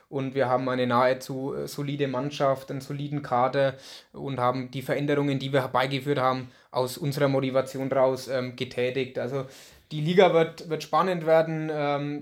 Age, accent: 20-39, German